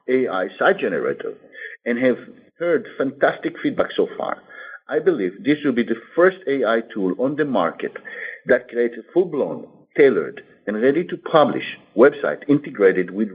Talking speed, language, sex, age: 145 wpm, English, male, 50-69